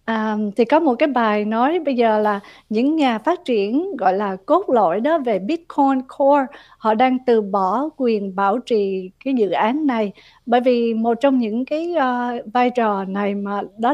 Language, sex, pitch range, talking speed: Vietnamese, female, 215-270 Hz, 195 wpm